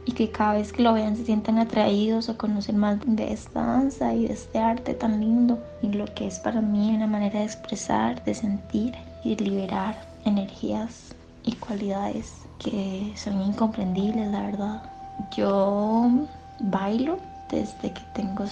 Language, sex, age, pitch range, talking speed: Spanish, female, 20-39, 200-240 Hz, 160 wpm